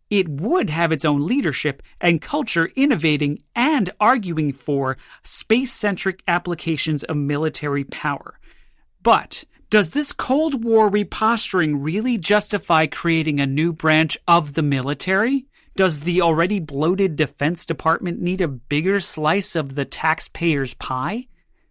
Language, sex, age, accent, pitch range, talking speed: English, male, 30-49, American, 150-210 Hz, 130 wpm